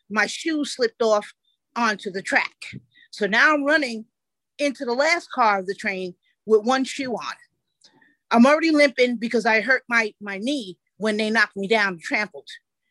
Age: 40-59